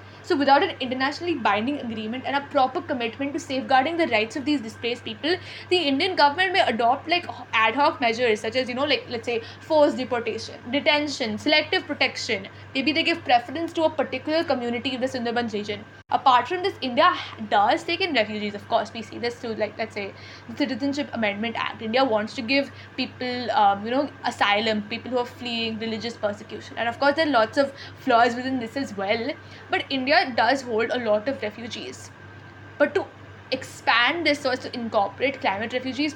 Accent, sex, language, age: Indian, female, English, 20-39